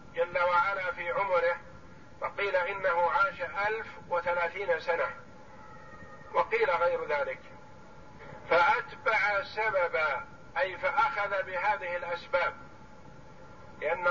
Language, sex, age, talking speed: Arabic, male, 50-69, 85 wpm